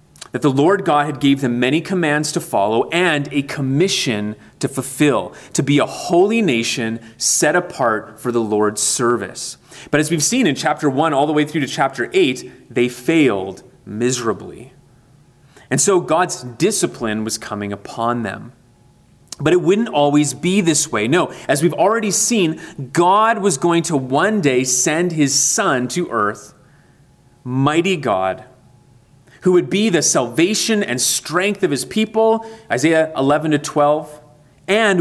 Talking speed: 160 wpm